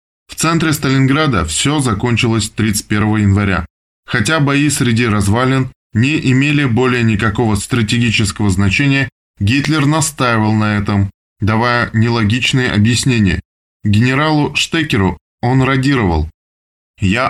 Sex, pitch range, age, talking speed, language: male, 100-135 Hz, 20-39, 100 wpm, Russian